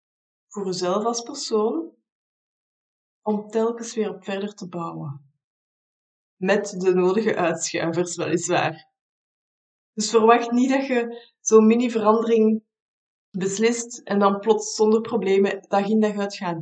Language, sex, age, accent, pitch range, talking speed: Dutch, female, 20-39, Dutch, 185-230 Hz, 125 wpm